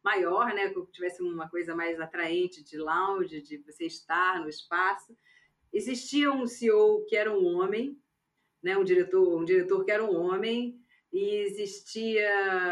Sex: female